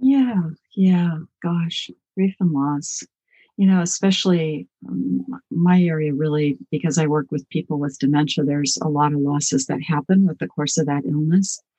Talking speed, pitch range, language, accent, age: 170 wpm, 145-180 Hz, English, American, 60-79